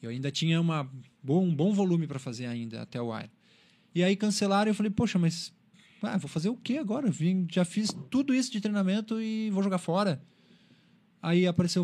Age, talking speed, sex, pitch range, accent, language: 20-39, 200 wpm, male, 135-190 Hz, Brazilian, Portuguese